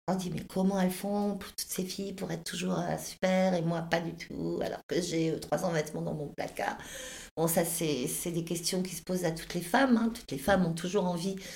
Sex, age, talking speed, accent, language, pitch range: female, 50-69, 240 wpm, French, Italian, 180-215 Hz